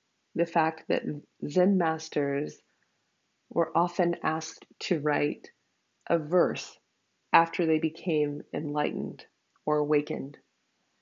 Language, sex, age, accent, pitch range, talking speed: English, female, 20-39, American, 155-180 Hz, 100 wpm